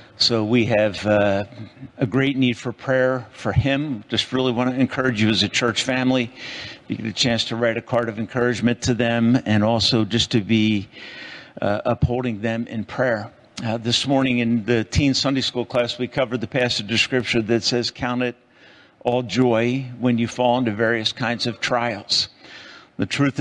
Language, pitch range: English, 110-125 Hz